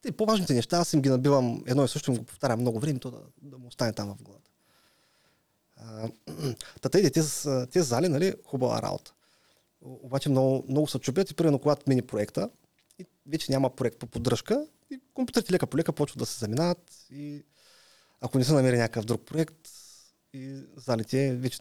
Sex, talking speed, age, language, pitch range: male, 175 wpm, 30-49, Bulgarian, 125-160 Hz